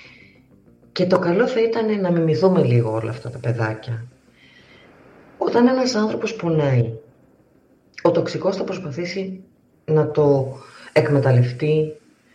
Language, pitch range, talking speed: Greek, 125-185 Hz, 110 wpm